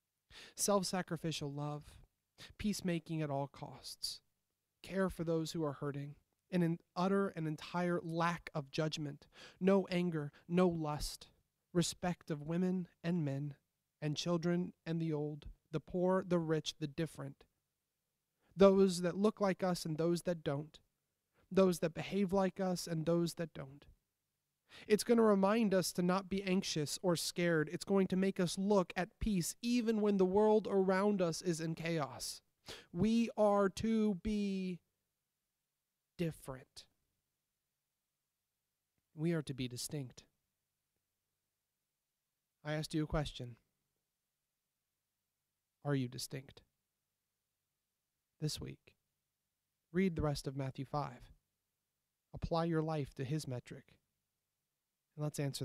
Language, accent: English, American